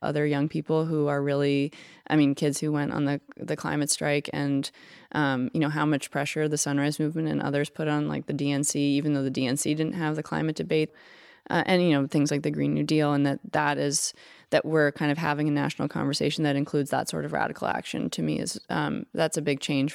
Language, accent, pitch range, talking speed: English, American, 140-155 Hz, 240 wpm